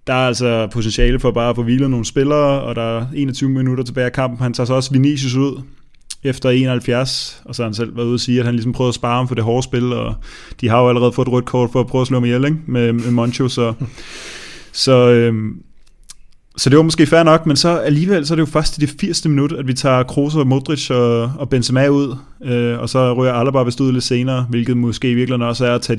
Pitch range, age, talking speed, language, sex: 120-140 Hz, 20-39, 265 wpm, Danish, male